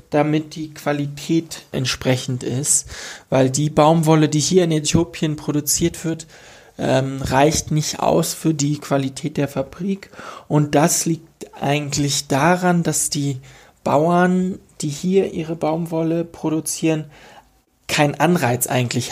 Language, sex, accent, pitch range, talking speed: German, male, German, 135-165 Hz, 120 wpm